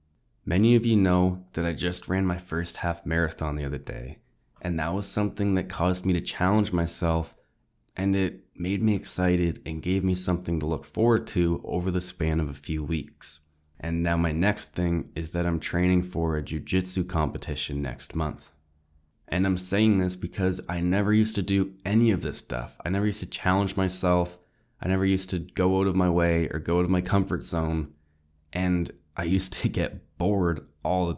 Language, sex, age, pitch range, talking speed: English, male, 20-39, 80-95 Hz, 200 wpm